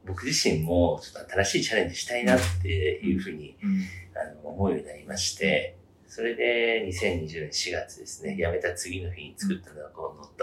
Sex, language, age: male, Japanese, 40-59